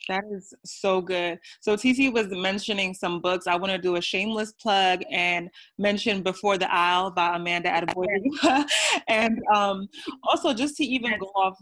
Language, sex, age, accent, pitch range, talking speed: English, female, 20-39, American, 180-235 Hz, 170 wpm